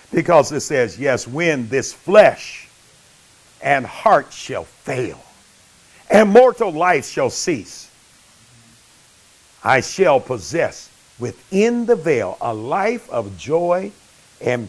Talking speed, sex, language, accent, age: 110 wpm, male, English, American, 60-79